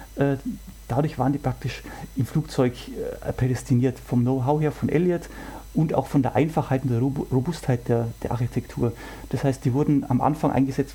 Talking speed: 165 wpm